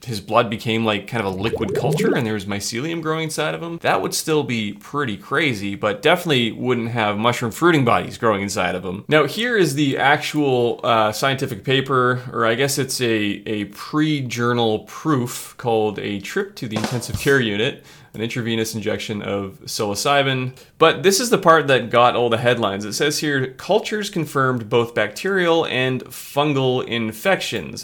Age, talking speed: 20-39, 180 wpm